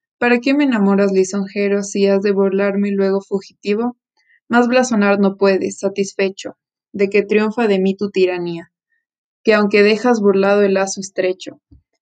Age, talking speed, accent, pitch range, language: 20-39, 155 wpm, Mexican, 195-220 Hz, Spanish